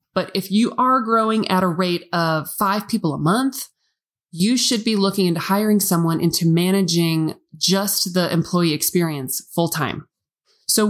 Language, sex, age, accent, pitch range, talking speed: English, male, 20-39, American, 170-215 Hz, 160 wpm